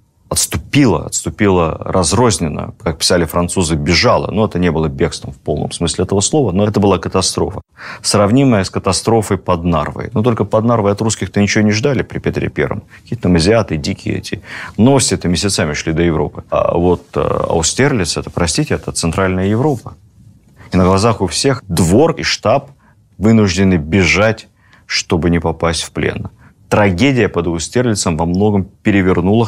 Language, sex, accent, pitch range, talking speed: Russian, male, native, 85-110 Hz, 155 wpm